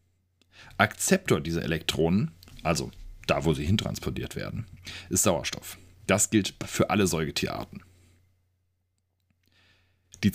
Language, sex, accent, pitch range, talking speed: German, male, German, 90-110 Hz, 100 wpm